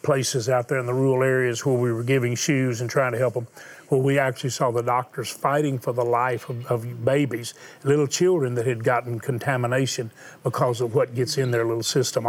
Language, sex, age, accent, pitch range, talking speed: English, male, 40-59, American, 125-160 Hz, 215 wpm